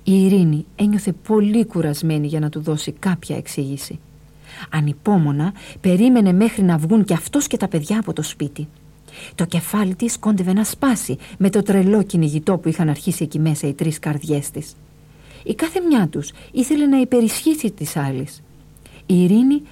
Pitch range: 155-215 Hz